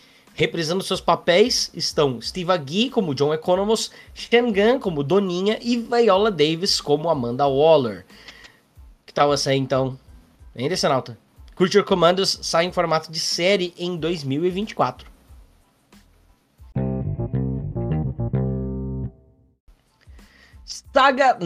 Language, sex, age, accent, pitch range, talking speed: Portuguese, male, 20-39, Brazilian, 135-195 Hz, 100 wpm